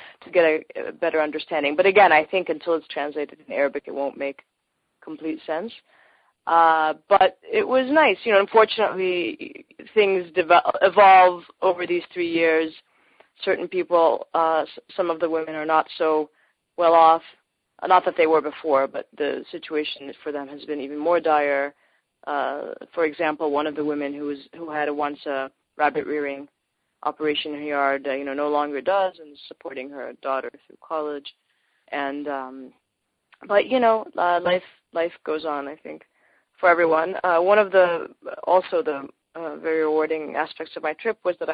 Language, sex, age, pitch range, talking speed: English, female, 20-39, 145-175 Hz, 175 wpm